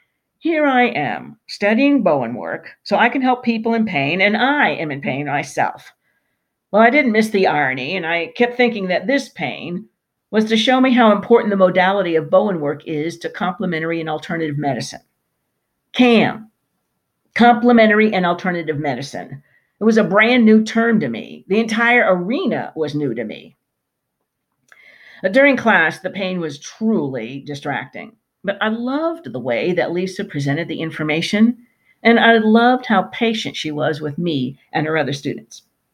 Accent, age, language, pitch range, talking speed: American, 50-69, English, 160-235 Hz, 165 wpm